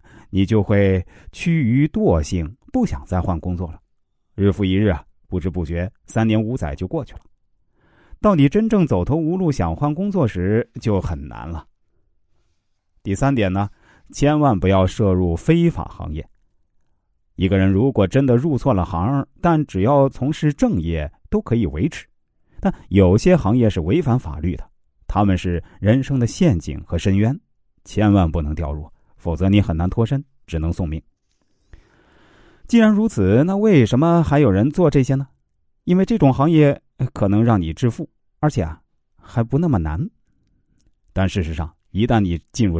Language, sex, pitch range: Chinese, male, 90-140 Hz